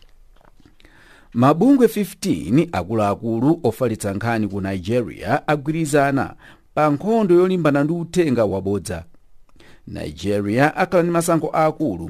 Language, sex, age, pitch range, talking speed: English, male, 50-69, 95-155 Hz, 85 wpm